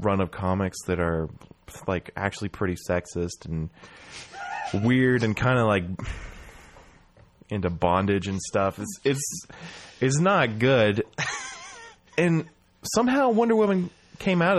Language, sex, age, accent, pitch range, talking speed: English, male, 20-39, American, 90-130 Hz, 125 wpm